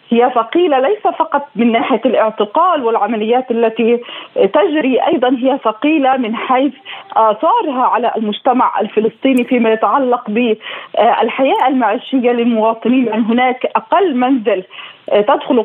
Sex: female